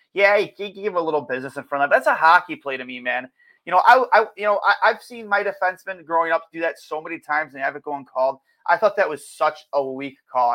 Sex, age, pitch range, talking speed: male, 30-49, 135-175 Hz, 275 wpm